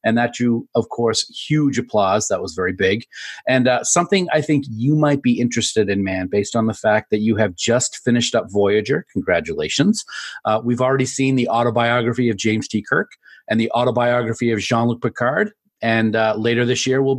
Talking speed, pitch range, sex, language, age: 195 wpm, 115-135 Hz, male, English, 30-49